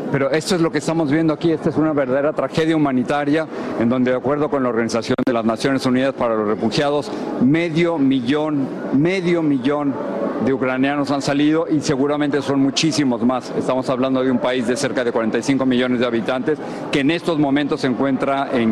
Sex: male